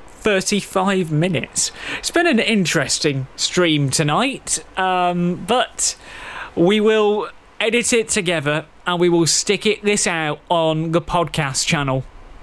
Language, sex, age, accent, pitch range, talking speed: English, male, 20-39, British, 145-185 Hz, 125 wpm